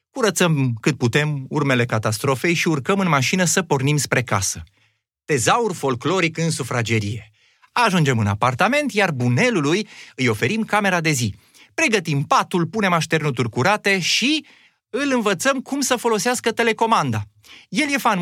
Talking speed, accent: 140 wpm, native